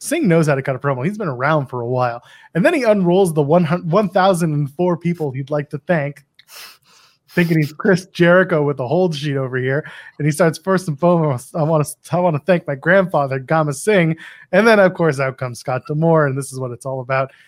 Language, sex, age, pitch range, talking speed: English, male, 20-39, 135-185 Hz, 220 wpm